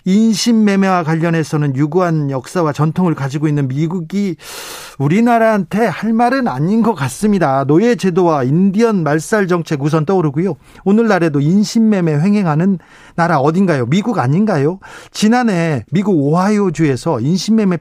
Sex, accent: male, native